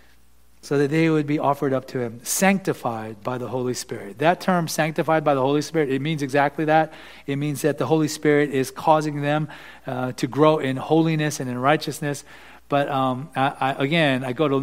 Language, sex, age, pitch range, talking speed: English, male, 40-59, 125-155 Hz, 195 wpm